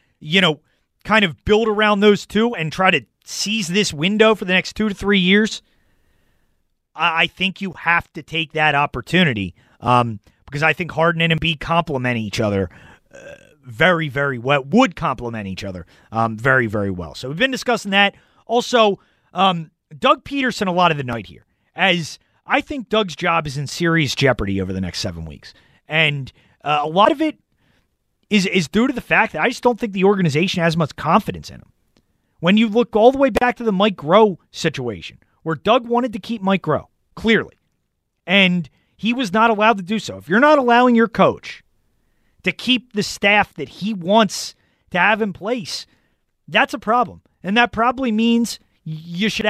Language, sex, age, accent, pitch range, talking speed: English, male, 30-49, American, 145-215 Hz, 190 wpm